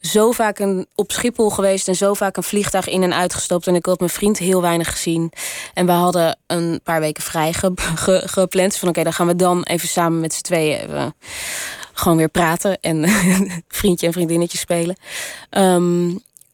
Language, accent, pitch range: Dutch, Dutch, 175-205 Hz